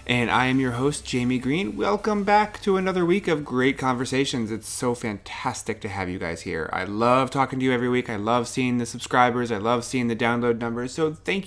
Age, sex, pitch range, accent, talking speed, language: 30-49, male, 100-130 Hz, American, 225 wpm, English